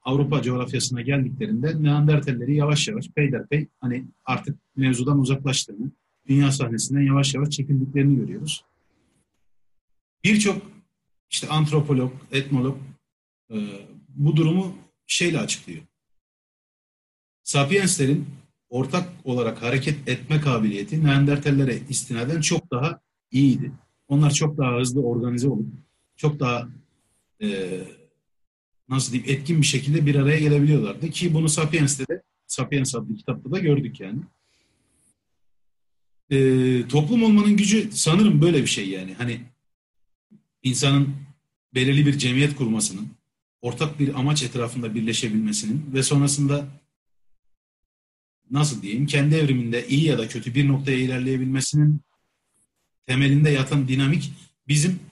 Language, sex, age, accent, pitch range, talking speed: Turkish, male, 40-59, native, 125-150 Hz, 110 wpm